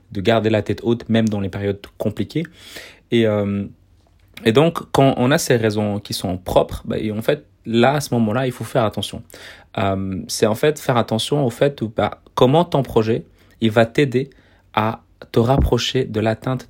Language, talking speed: French, 200 wpm